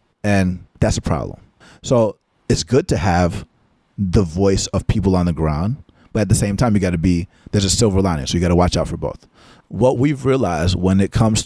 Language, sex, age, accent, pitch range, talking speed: English, male, 30-49, American, 90-110 Hz, 225 wpm